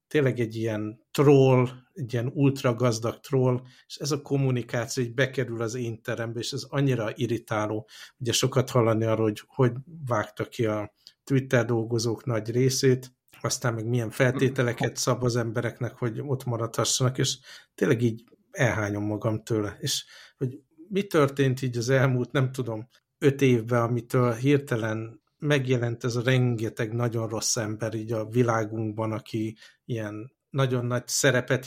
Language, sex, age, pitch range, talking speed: Hungarian, male, 60-79, 115-135 Hz, 150 wpm